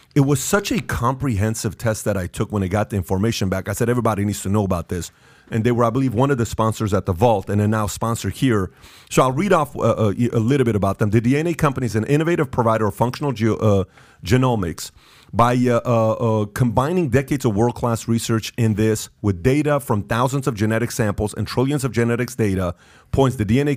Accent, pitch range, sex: American, 105-135 Hz, male